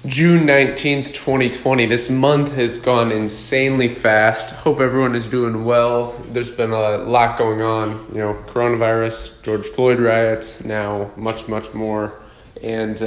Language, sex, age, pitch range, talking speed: English, male, 20-39, 110-130 Hz, 140 wpm